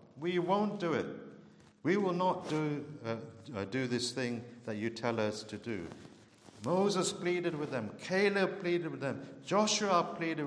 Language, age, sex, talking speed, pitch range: English, 50-69, male, 160 wpm, 120-175 Hz